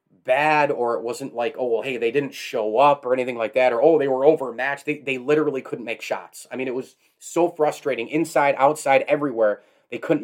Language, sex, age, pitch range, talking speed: English, male, 30-49, 125-150 Hz, 225 wpm